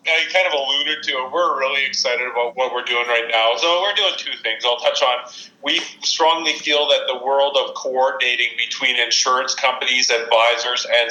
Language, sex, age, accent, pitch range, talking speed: English, male, 40-59, American, 120-150 Hz, 195 wpm